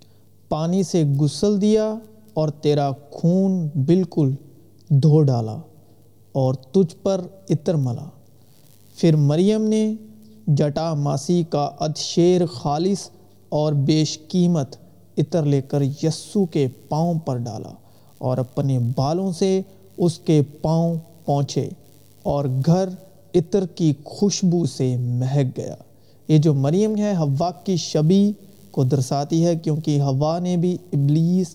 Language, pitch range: Urdu, 140-170 Hz